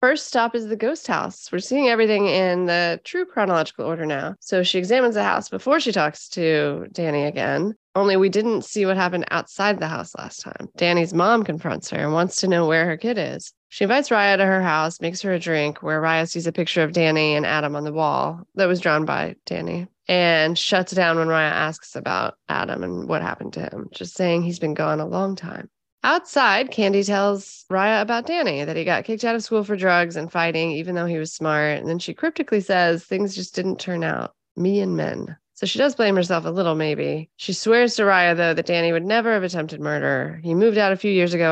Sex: female